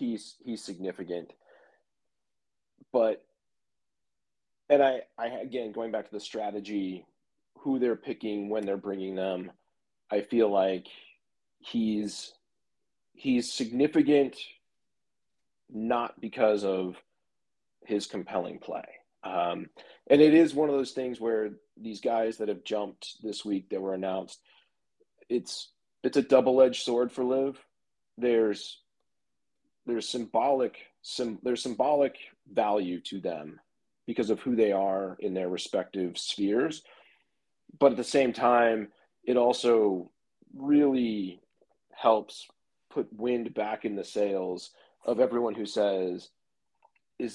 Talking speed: 120 wpm